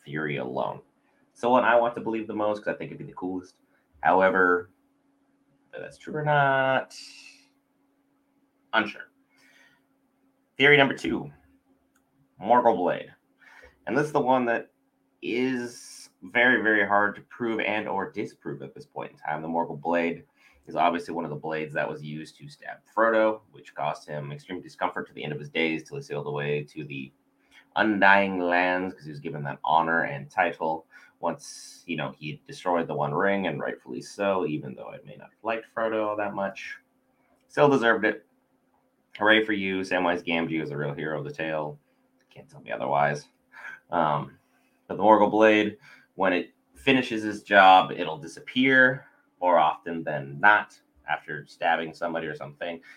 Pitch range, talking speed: 80-120 Hz, 175 wpm